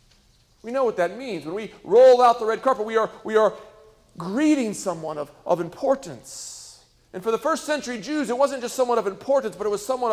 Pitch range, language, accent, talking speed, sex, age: 180-245 Hz, English, American, 220 wpm, male, 40-59